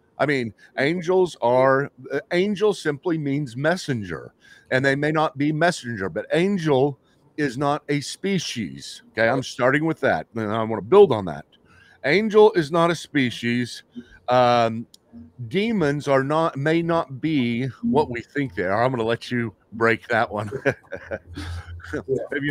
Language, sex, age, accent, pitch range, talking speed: English, male, 50-69, American, 115-155 Hz, 155 wpm